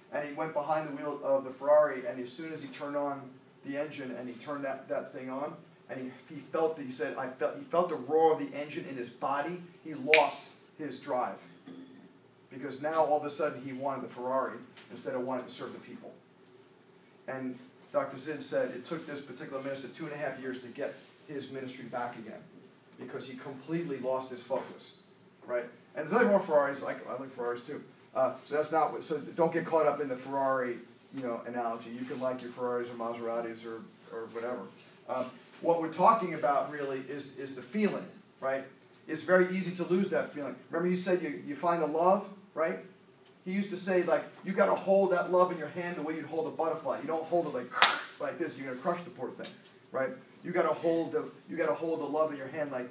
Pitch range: 130-165 Hz